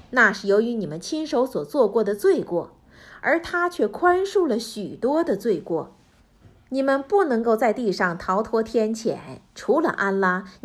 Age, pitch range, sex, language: 50-69, 200-305 Hz, female, Chinese